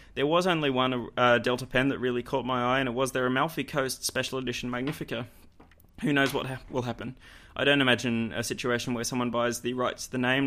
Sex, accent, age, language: male, Australian, 20-39, English